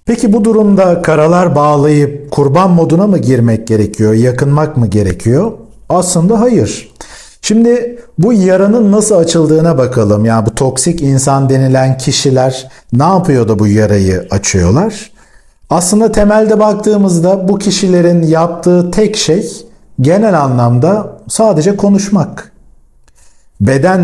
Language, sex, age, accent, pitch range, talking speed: Turkish, male, 50-69, native, 125-185 Hz, 115 wpm